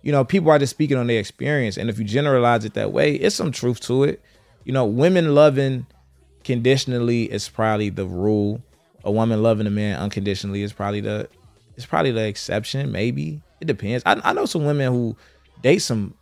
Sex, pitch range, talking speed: male, 105-130 Hz, 200 wpm